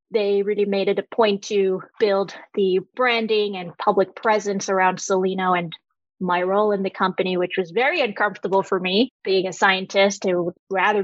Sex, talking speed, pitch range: female, 180 wpm, 185-215 Hz